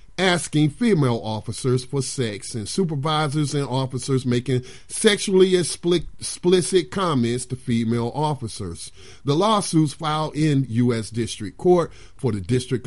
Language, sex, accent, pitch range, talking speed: English, male, American, 115-165 Hz, 120 wpm